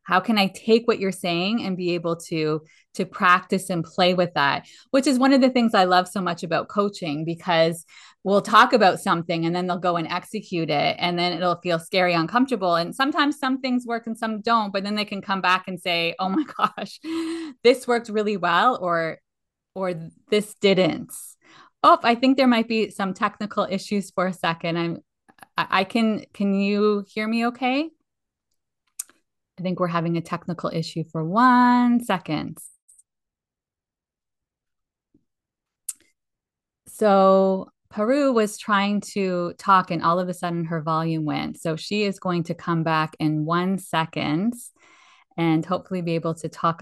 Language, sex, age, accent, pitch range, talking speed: English, female, 20-39, American, 170-215 Hz, 170 wpm